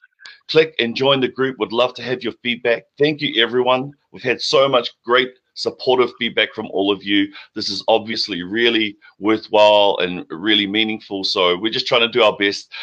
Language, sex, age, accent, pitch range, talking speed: English, male, 30-49, Australian, 110-155 Hz, 190 wpm